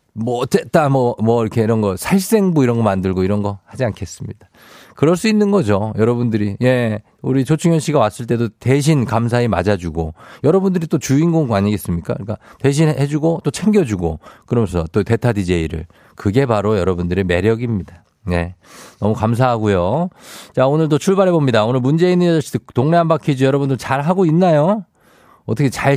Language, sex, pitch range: Korean, male, 105-155 Hz